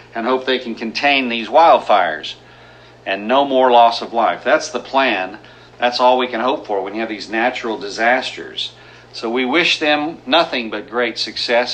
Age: 50-69